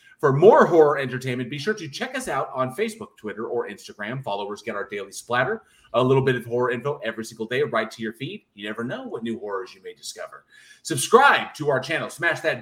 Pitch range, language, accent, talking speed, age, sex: 120-160 Hz, English, American, 230 wpm, 30-49, male